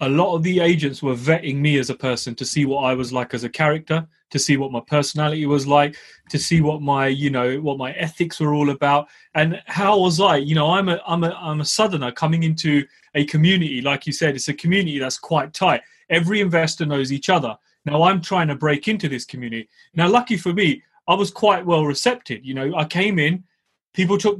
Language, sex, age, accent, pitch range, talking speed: English, male, 30-49, British, 140-190 Hz, 230 wpm